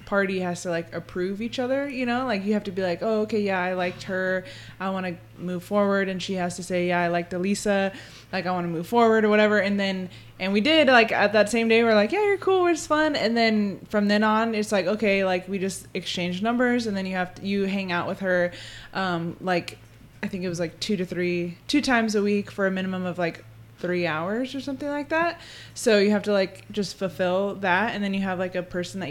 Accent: American